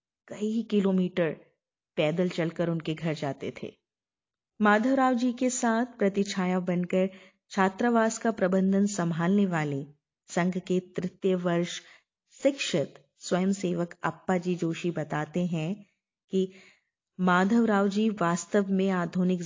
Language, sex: Hindi, female